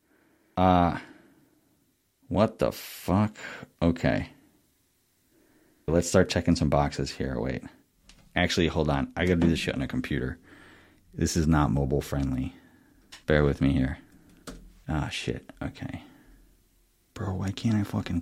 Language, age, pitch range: English, 30-49, 80-95 Hz